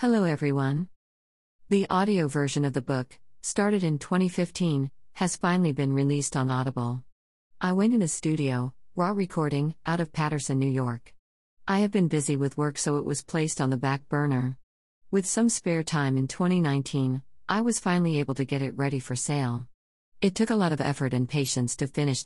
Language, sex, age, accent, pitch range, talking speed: English, female, 50-69, American, 130-160 Hz, 185 wpm